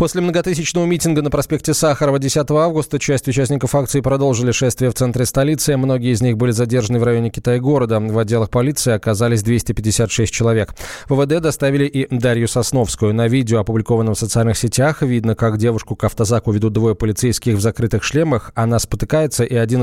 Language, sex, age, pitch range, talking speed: Russian, male, 20-39, 115-140 Hz, 175 wpm